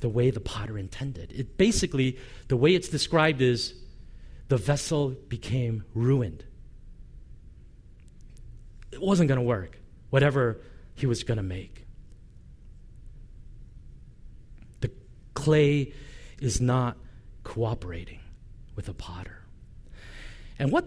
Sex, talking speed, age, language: male, 105 wpm, 40-59, English